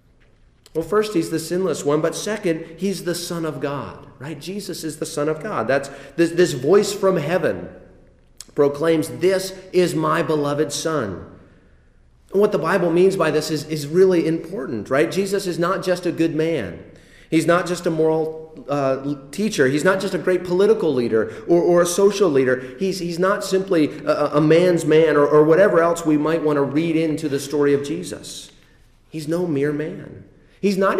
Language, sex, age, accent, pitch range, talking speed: English, male, 40-59, American, 140-175 Hz, 190 wpm